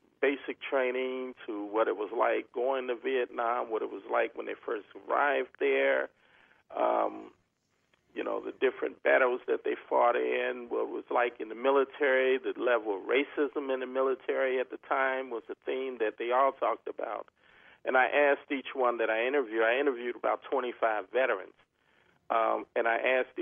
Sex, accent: male, American